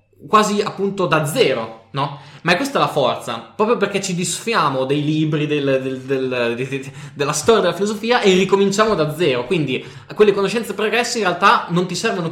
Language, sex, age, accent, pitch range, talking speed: Italian, male, 10-29, native, 130-180 Hz, 185 wpm